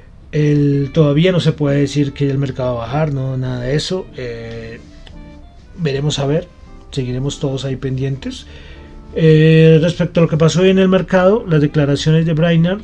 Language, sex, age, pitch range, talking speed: Spanish, male, 30-49, 125-165 Hz, 180 wpm